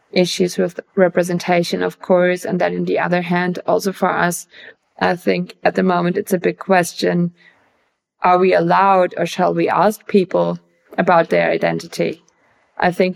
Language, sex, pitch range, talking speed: English, female, 180-205 Hz, 165 wpm